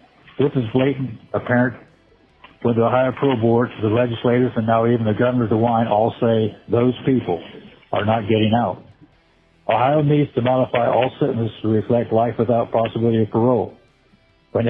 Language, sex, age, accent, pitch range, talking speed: English, male, 50-69, American, 115-130 Hz, 160 wpm